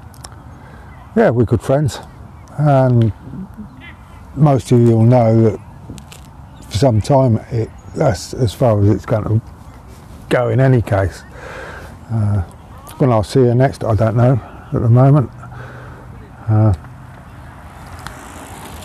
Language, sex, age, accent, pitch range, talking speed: English, male, 50-69, British, 100-125 Hz, 125 wpm